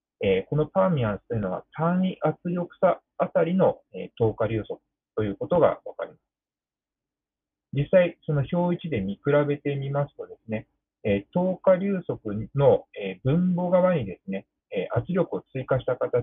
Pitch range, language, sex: 115-180 Hz, Japanese, male